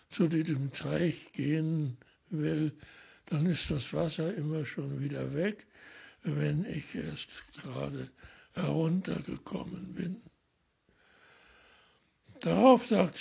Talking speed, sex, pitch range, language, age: 95 wpm, male, 155-210 Hz, German, 60-79